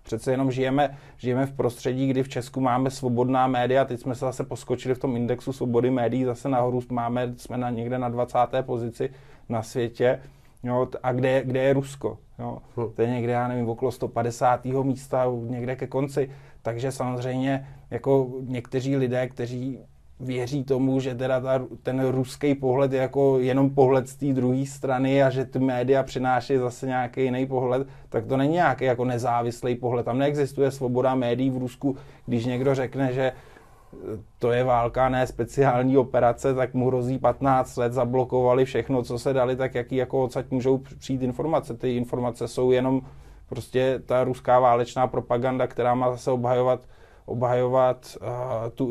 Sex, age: male, 20-39